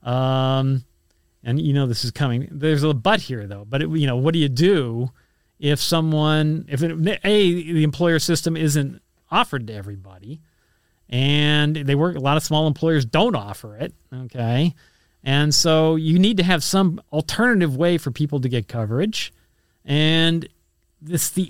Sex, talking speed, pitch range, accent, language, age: male, 170 wpm, 130-170 Hz, American, English, 40-59